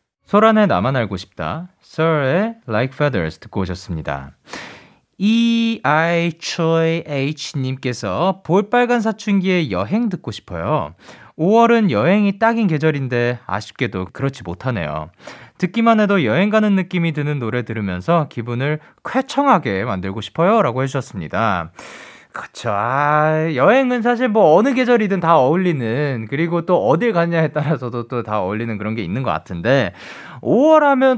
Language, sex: Korean, male